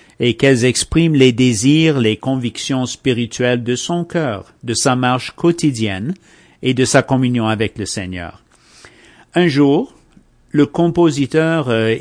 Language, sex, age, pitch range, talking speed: English, male, 50-69, 115-155 Hz, 135 wpm